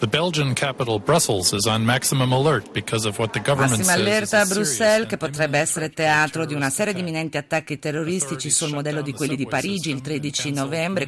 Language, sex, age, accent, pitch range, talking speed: Italian, female, 50-69, native, 130-165 Hz, 165 wpm